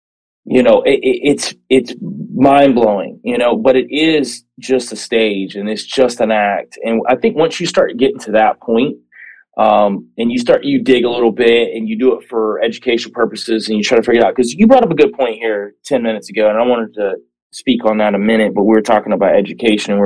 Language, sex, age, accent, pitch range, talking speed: English, male, 30-49, American, 110-150 Hz, 245 wpm